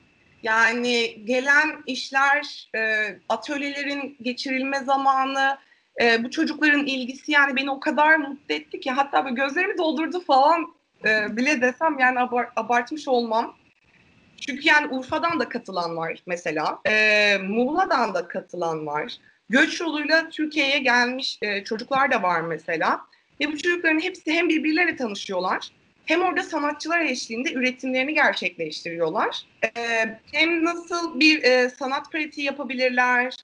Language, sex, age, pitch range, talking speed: Turkish, female, 30-49, 225-290 Hz, 120 wpm